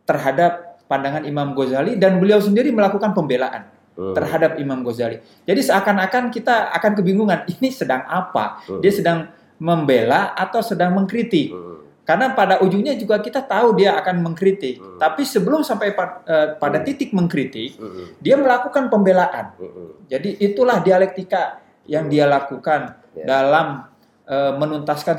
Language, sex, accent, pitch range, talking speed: Indonesian, male, native, 140-200 Hz, 125 wpm